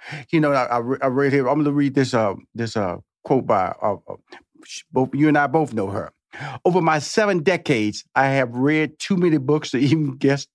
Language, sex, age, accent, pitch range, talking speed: English, male, 50-69, American, 115-150 Hz, 210 wpm